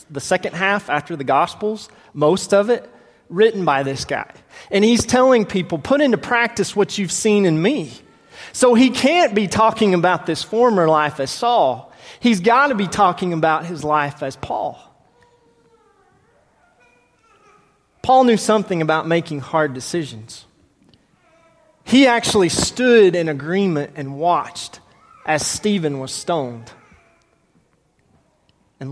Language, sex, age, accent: English, male, 30-49, American